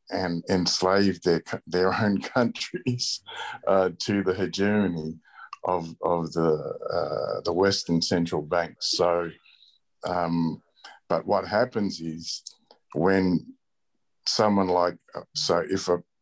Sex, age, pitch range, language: male, 50-69, 85-100 Hz, English